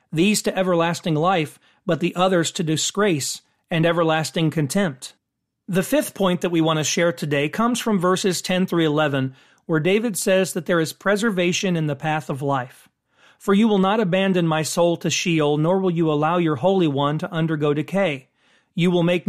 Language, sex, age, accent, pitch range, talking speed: English, male, 40-59, American, 155-195 Hz, 190 wpm